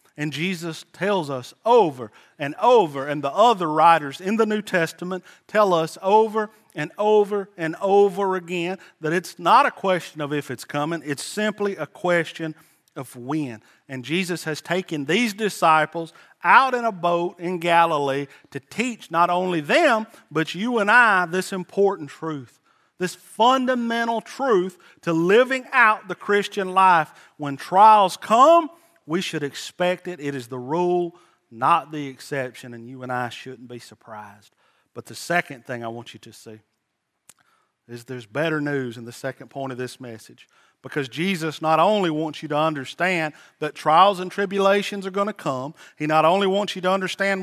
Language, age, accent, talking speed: English, 40-59, American, 170 wpm